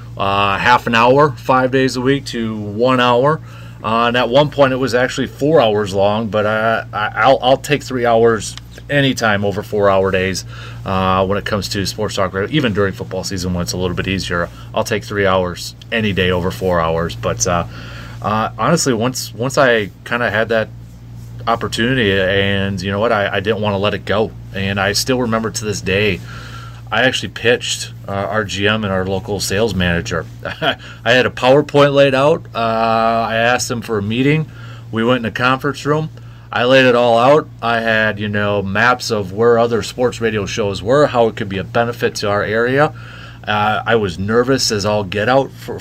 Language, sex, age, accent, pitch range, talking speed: English, male, 30-49, American, 100-120 Hz, 205 wpm